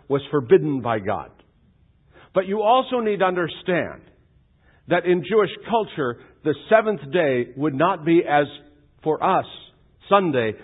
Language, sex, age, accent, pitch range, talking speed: English, male, 50-69, American, 145-195 Hz, 135 wpm